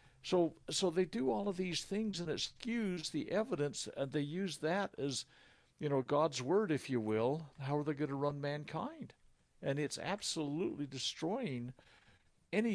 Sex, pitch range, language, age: male, 140-195 Hz, English, 60-79